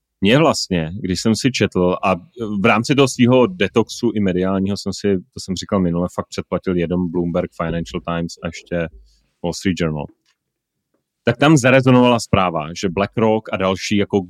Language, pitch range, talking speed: Czech, 85-100 Hz, 170 wpm